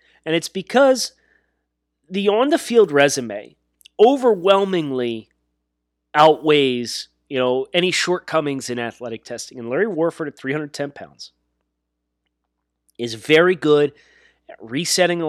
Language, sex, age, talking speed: English, male, 30-49, 105 wpm